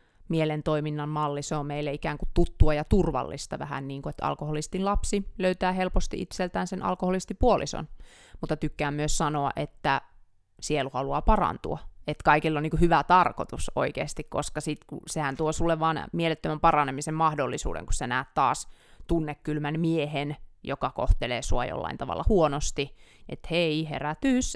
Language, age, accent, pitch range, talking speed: Finnish, 30-49, native, 145-170 Hz, 150 wpm